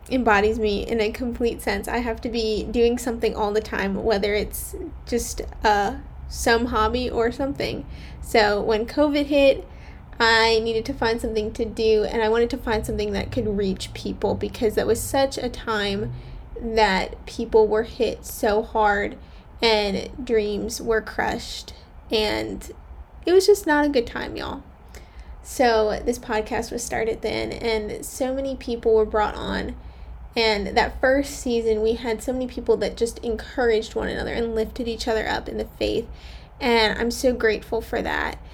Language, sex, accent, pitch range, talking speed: English, female, American, 215-240 Hz, 170 wpm